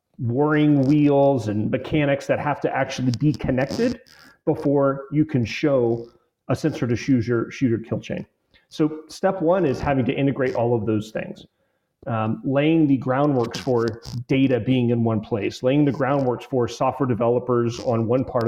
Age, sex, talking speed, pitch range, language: 30-49, male, 170 wpm, 115-145 Hz, English